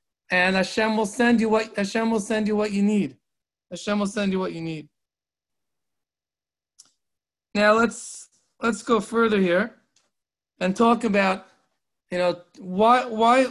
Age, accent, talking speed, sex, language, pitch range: 40-59, American, 145 wpm, male, English, 195-230 Hz